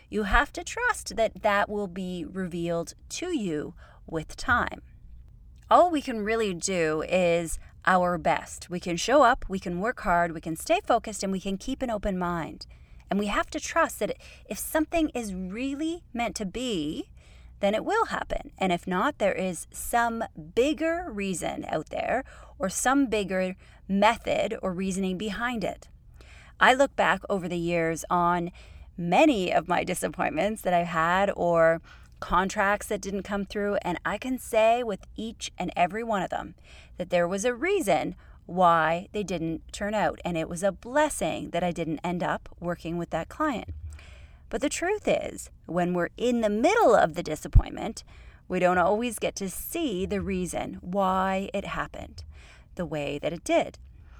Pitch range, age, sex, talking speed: 175-230 Hz, 30-49, female, 175 wpm